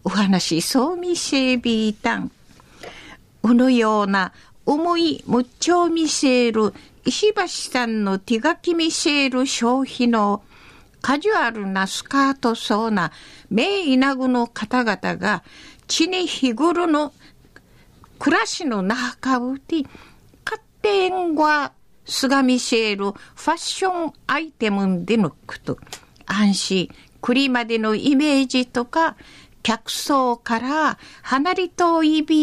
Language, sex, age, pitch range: Japanese, female, 50-69, 225-320 Hz